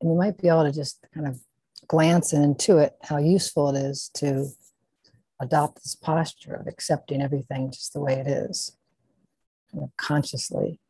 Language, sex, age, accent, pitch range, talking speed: English, female, 60-79, American, 135-150 Hz, 170 wpm